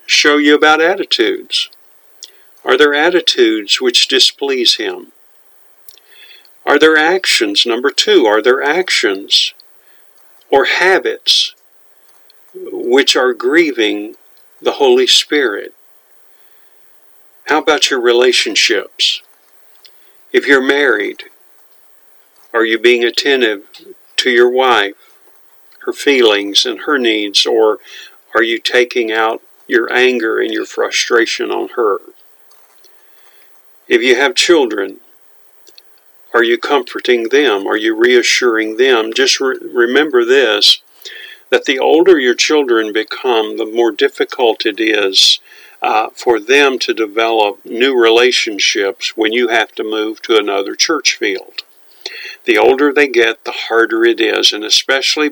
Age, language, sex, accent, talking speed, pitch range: 50-69, English, male, American, 120 wpm, 350-415 Hz